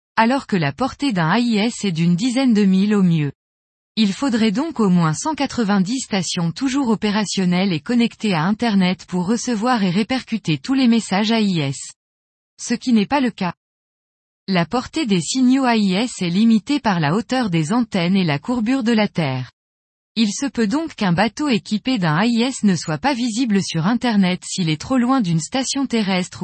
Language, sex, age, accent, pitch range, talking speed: French, female, 20-39, French, 180-245 Hz, 180 wpm